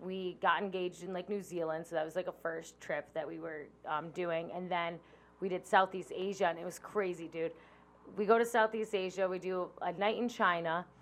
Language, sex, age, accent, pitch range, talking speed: English, female, 20-39, American, 180-225 Hz, 225 wpm